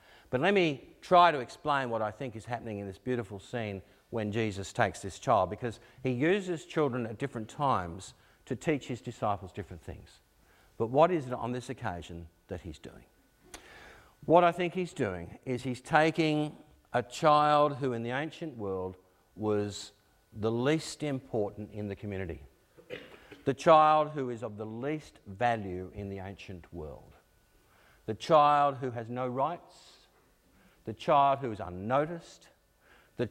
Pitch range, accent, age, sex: 100-130 Hz, Australian, 50-69, male